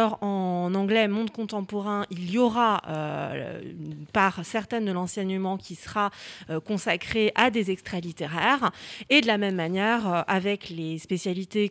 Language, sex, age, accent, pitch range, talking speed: French, female, 30-49, French, 180-240 Hz, 155 wpm